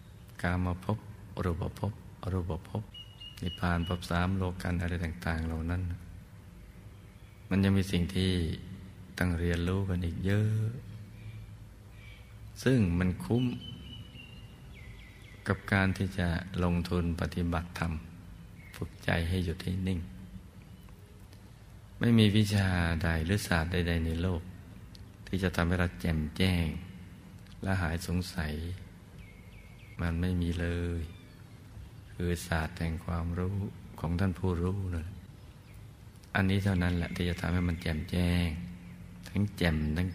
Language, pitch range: Thai, 85-100 Hz